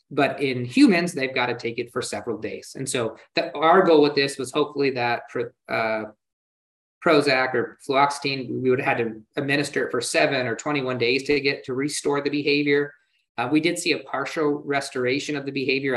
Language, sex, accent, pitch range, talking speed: English, male, American, 125-150 Hz, 205 wpm